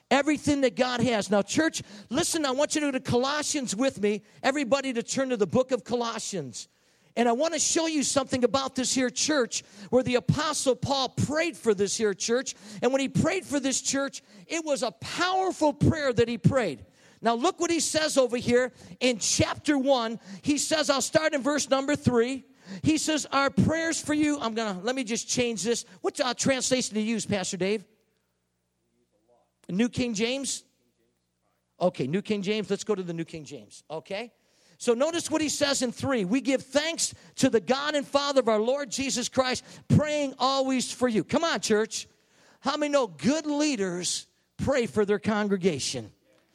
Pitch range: 210-275 Hz